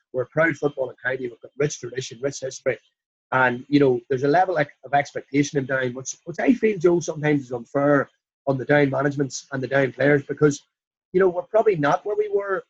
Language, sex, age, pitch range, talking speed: English, male, 30-49, 130-160 Hz, 220 wpm